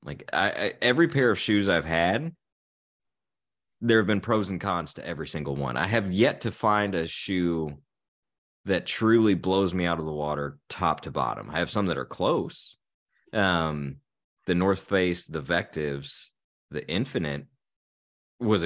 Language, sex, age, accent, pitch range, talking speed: English, male, 30-49, American, 70-100 Hz, 165 wpm